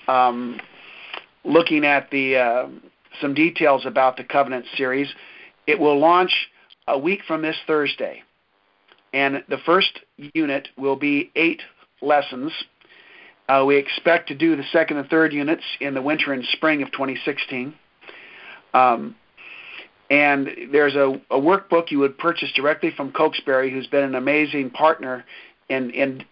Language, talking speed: English, 140 wpm